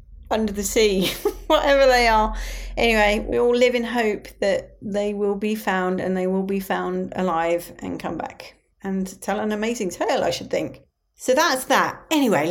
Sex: female